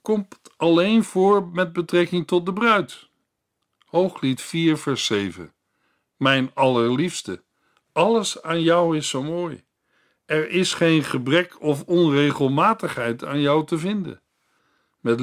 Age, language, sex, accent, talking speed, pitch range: 50-69, Dutch, male, Dutch, 120 wpm, 135-175 Hz